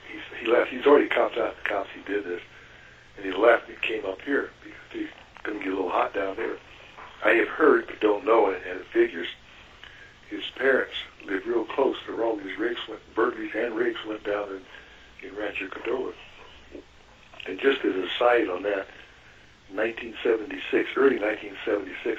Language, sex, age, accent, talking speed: English, male, 60-79, American, 180 wpm